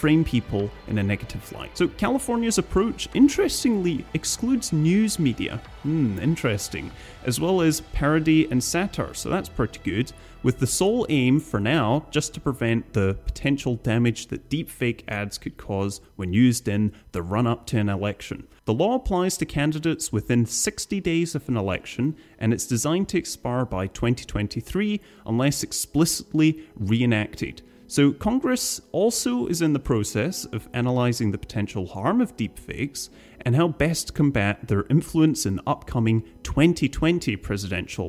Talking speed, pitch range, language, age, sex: 155 wpm, 110-160 Hz, English, 30-49, male